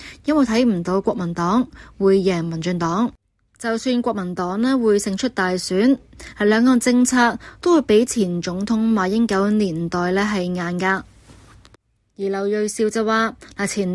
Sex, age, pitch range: female, 20-39, 180-225 Hz